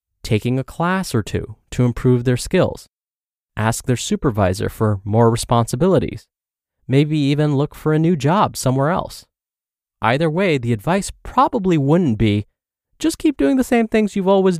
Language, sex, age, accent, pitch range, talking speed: English, male, 20-39, American, 110-155 Hz, 160 wpm